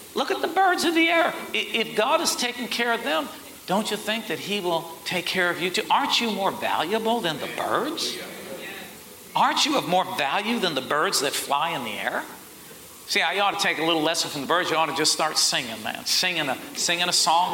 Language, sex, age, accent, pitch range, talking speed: English, male, 50-69, American, 155-220 Hz, 235 wpm